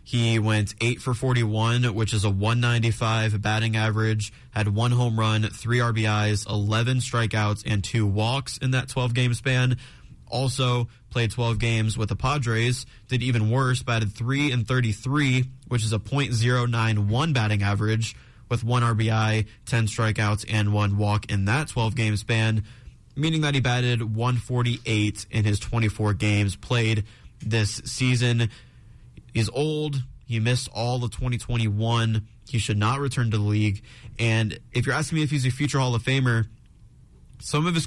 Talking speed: 155 wpm